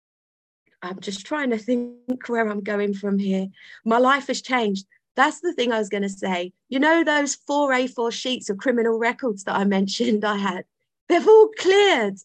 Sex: female